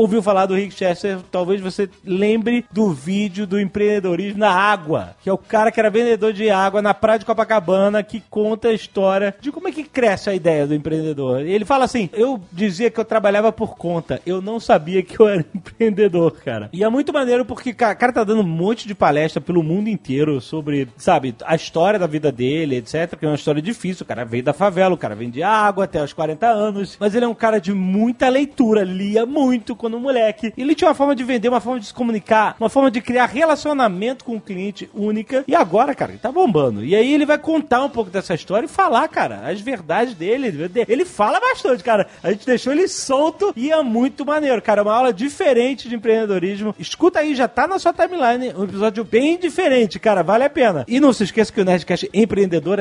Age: 30-49